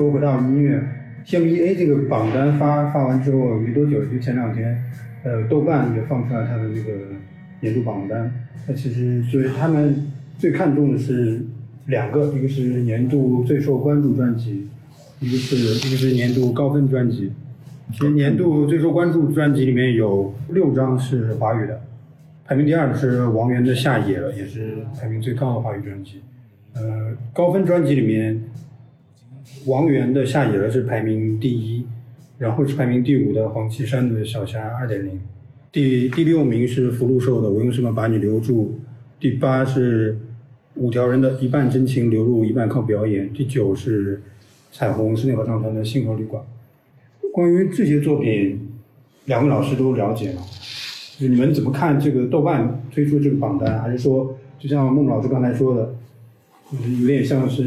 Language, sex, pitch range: Chinese, male, 115-140 Hz